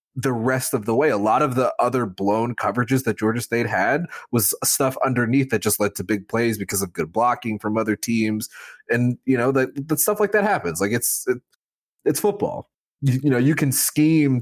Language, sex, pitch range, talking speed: English, male, 110-145 Hz, 215 wpm